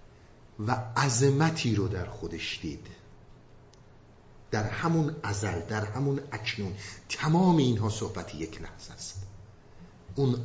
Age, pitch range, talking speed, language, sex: 50-69, 105-150 Hz, 110 wpm, Persian, male